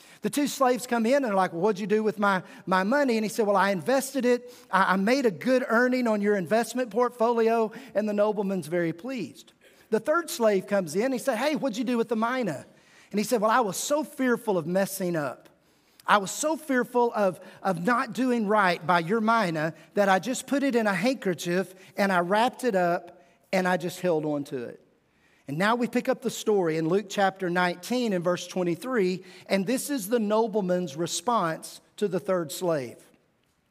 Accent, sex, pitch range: American, male, 185-250 Hz